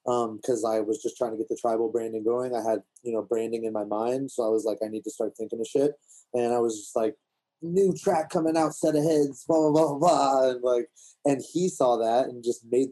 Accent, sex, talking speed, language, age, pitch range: American, male, 255 wpm, English, 20-39, 115-135 Hz